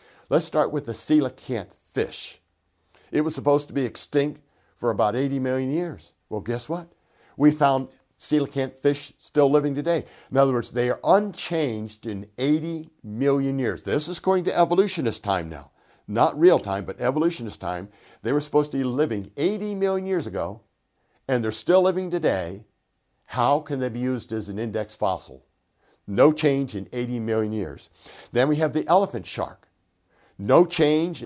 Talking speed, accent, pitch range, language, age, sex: 170 wpm, American, 110-160 Hz, English, 60-79, male